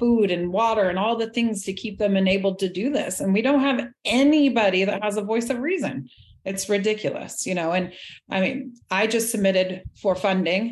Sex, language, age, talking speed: female, English, 30-49, 205 wpm